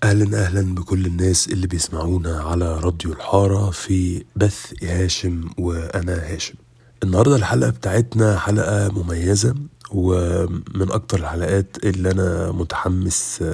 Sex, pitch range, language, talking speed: male, 90-110 Hz, Arabic, 110 wpm